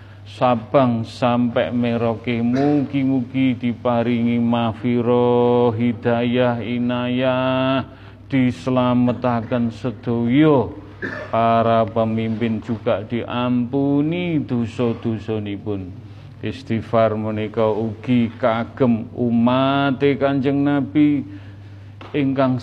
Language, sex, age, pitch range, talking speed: Indonesian, male, 40-59, 115-130 Hz, 65 wpm